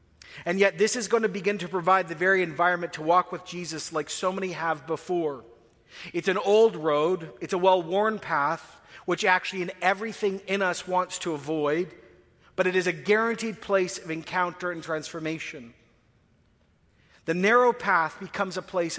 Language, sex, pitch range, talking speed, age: English, male, 160-195 Hz, 170 wpm, 40-59